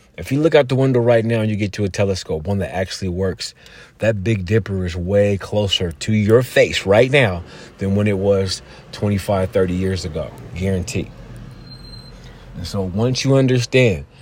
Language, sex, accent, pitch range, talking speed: English, male, American, 90-115 Hz, 180 wpm